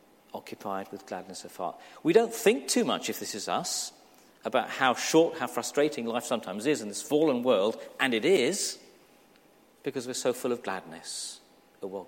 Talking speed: 185 wpm